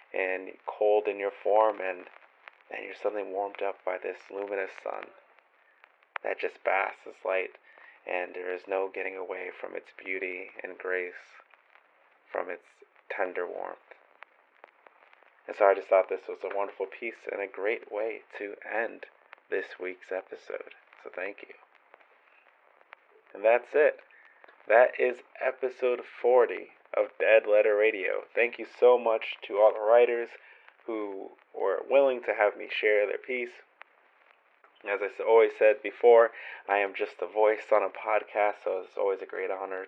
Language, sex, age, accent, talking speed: English, male, 30-49, American, 155 wpm